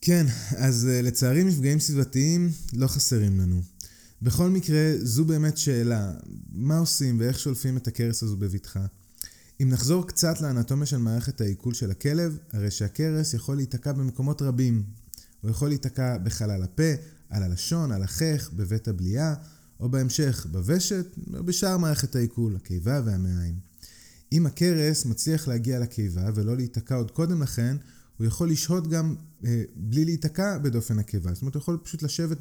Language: Hebrew